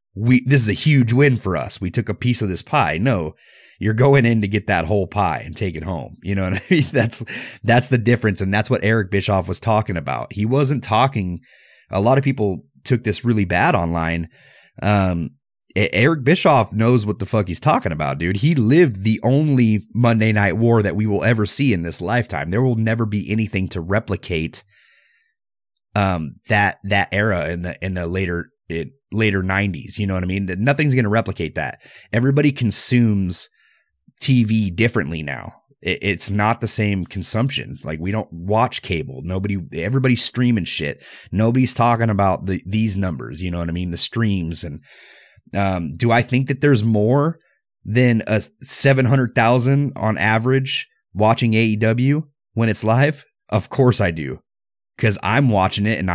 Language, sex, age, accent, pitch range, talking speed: English, male, 30-49, American, 95-125 Hz, 185 wpm